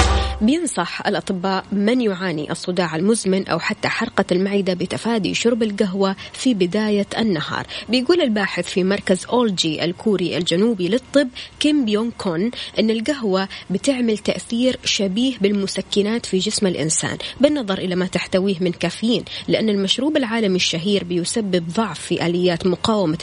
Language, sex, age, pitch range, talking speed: Arabic, female, 20-39, 180-230 Hz, 130 wpm